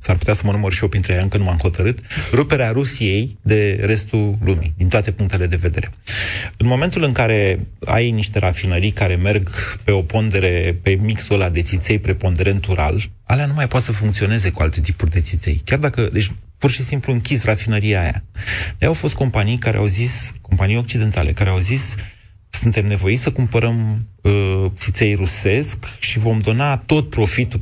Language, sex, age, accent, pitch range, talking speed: Romanian, male, 30-49, native, 95-120 Hz, 185 wpm